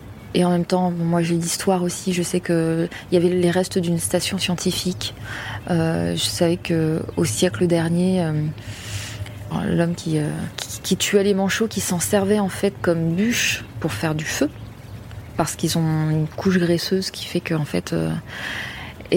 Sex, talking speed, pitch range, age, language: female, 180 wpm, 155-180 Hz, 20-39, French